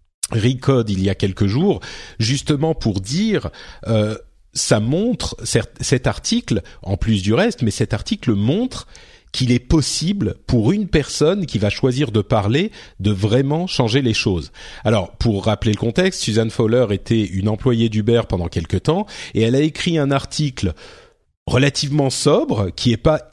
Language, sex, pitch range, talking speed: French, male, 100-135 Hz, 165 wpm